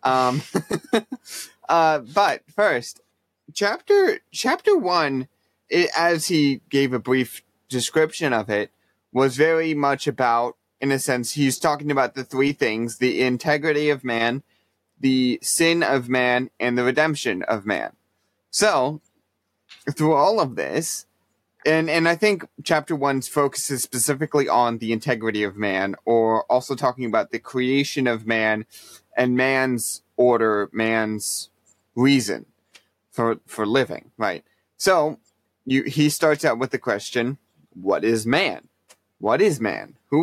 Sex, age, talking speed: male, 20-39, 135 wpm